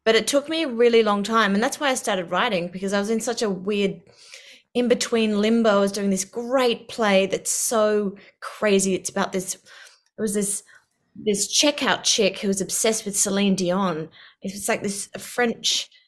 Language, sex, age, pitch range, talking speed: English, female, 20-39, 190-230 Hz, 190 wpm